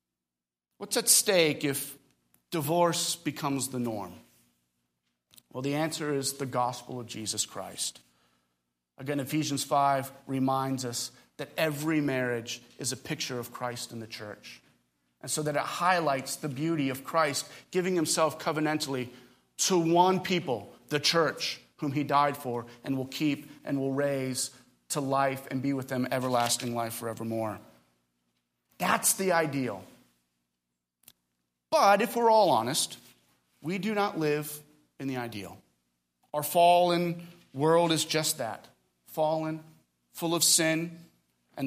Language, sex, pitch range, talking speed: English, male, 110-150 Hz, 135 wpm